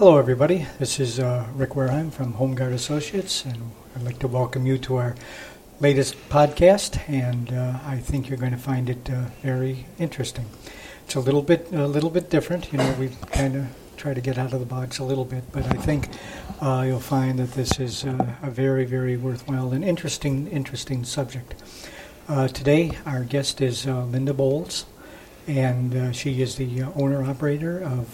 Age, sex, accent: 60-79, male, American